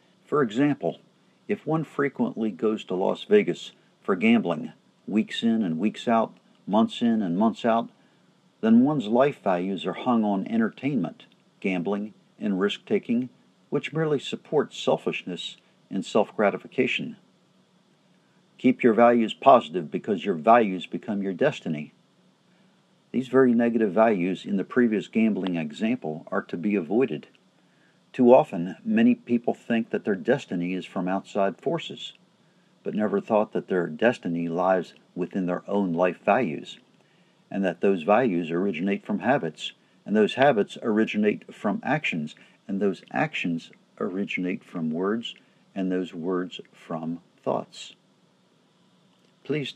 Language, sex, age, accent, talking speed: English, male, 50-69, American, 135 wpm